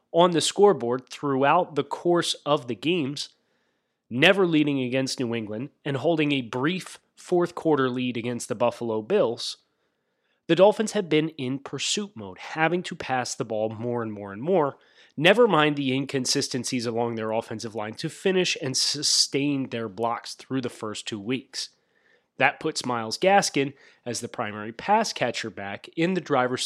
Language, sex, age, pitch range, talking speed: English, male, 30-49, 120-160 Hz, 165 wpm